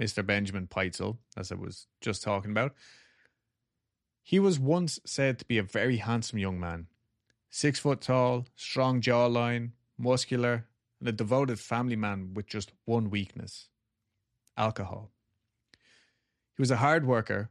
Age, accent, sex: 30-49, Irish, male